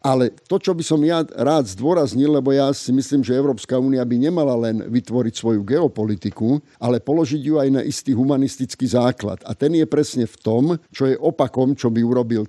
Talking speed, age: 195 wpm, 50-69